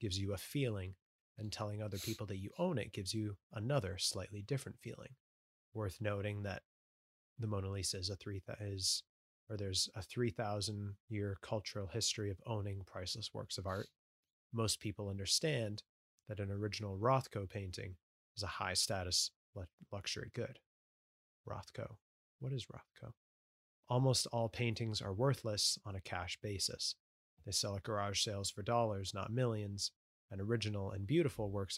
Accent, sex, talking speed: American, male, 160 wpm